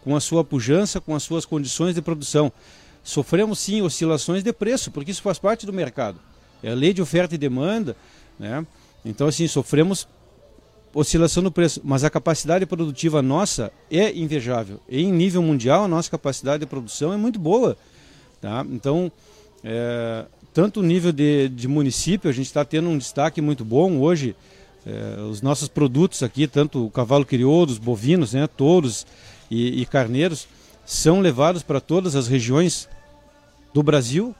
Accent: Brazilian